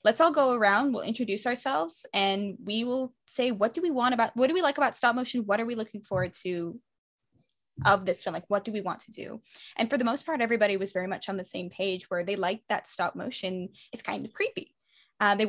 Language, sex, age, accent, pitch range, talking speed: English, female, 10-29, American, 185-240 Hz, 250 wpm